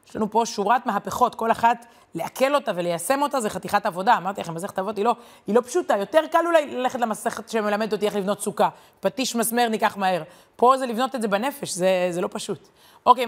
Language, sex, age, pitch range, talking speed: Hebrew, female, 30-49, 200-245 Hz, 215 wpm